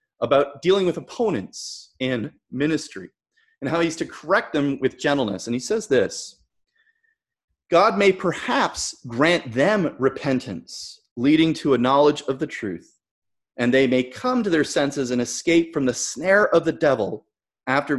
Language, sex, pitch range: English, male, 125-180 Hz